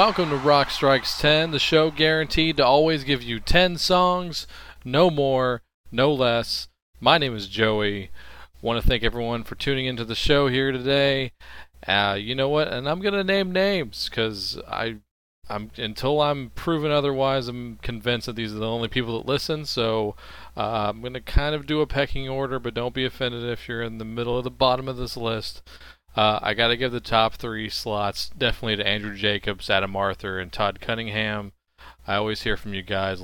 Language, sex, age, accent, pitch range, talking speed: English, male, 40-59, American, 95-130 Hz, 200 wpm